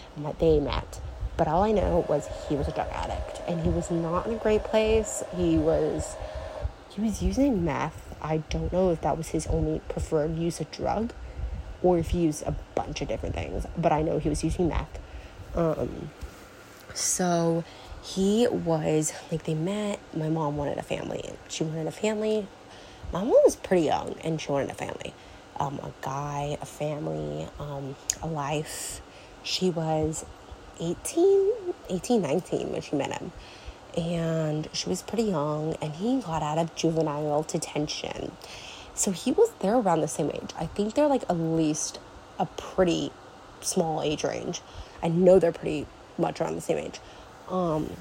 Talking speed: 175 wpm